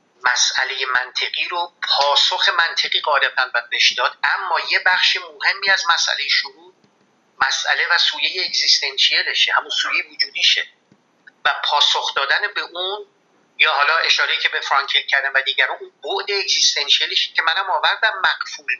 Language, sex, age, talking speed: Persian, male, 50-69, 135 wpm